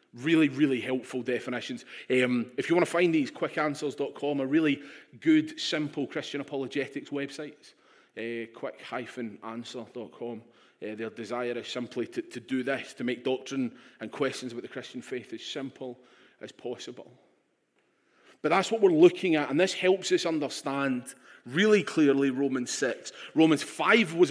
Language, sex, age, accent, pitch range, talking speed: English, male, 30-49, British, 125-155 Hz, 155 wpm